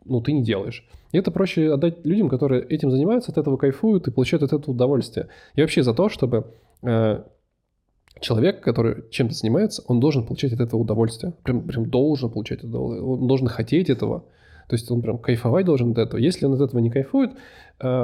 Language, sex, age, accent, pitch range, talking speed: Russian, male, 20-39, native, 115-140 Hz, 200 wpm